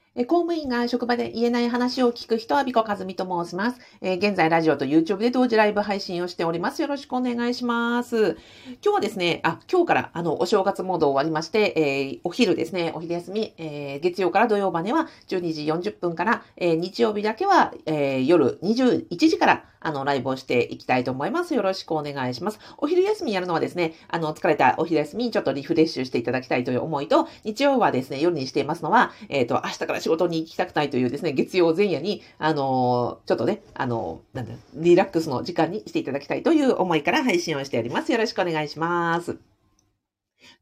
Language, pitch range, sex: Japanese, 155-235 Hz, female